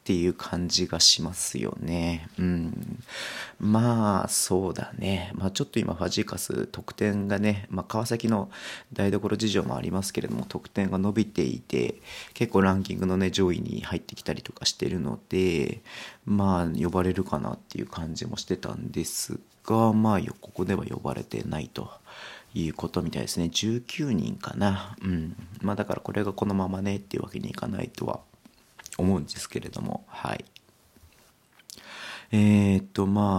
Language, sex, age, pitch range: Japanese, male, 40-59, 90-105 Hz